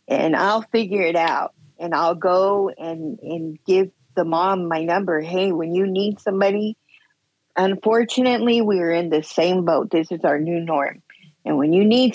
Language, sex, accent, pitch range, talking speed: English, female, American, 165-210 Hz, 175 wpm